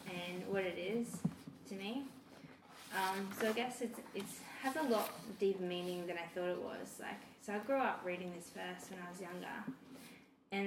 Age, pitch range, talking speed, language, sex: 10-29, 175-215 Hz, 195 wpm, English, female